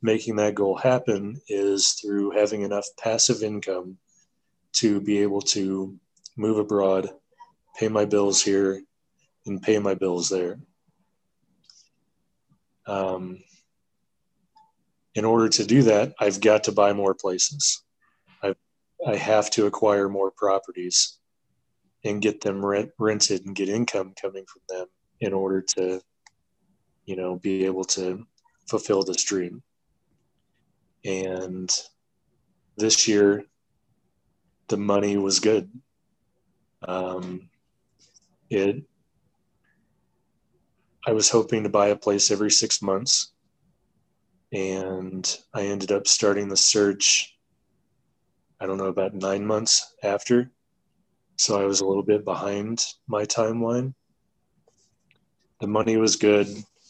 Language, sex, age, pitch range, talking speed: English, male, 20-39, 95-110 Hz, 120 wpm